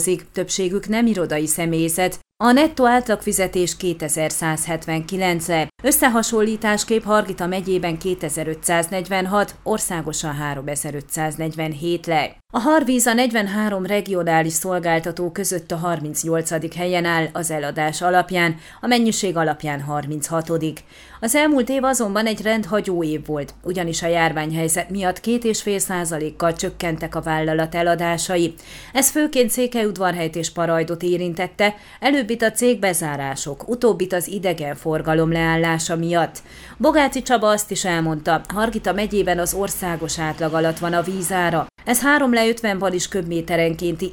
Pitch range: 165-210 Hz